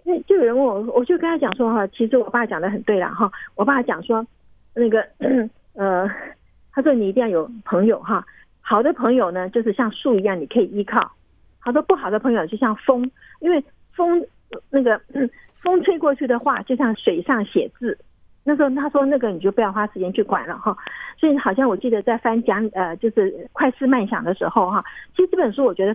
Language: Chinese